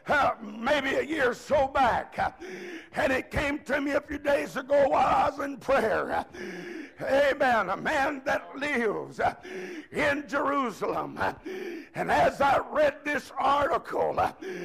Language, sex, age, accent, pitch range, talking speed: English, male, 60-79, American, 270-300 Hz, 140 wpm